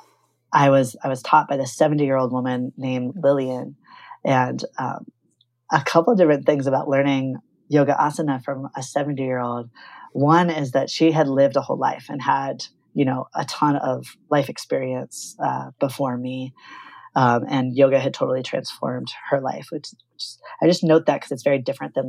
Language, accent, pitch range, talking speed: English, American, 130-150 Hz, 185 wpm